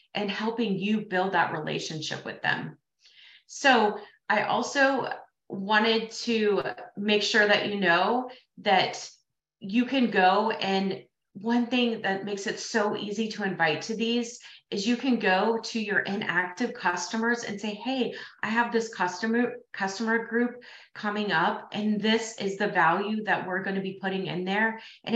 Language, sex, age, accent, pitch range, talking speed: English, female, 30-49, American, 180-225 Hz, 155 wpm